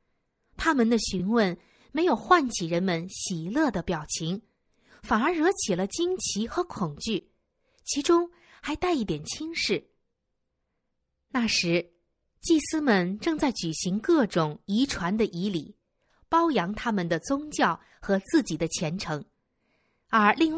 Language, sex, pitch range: Chinese, female, 180-285 Hz